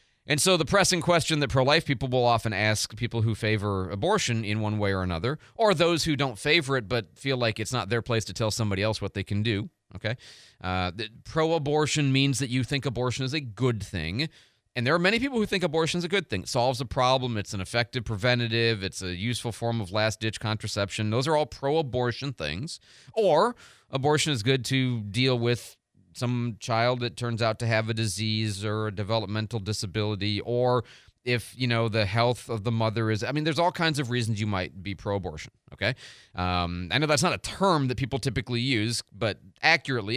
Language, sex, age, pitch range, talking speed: English, male, 30-49, 110-135 Hz, 210 wpm